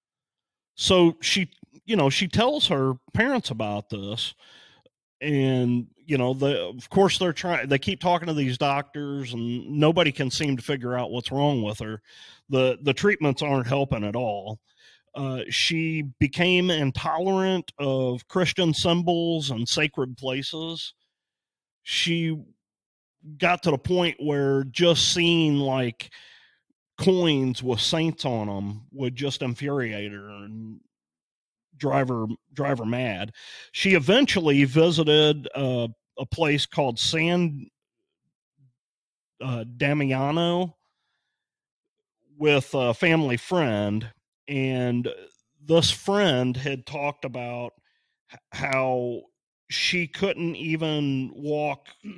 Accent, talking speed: American, 115 wpm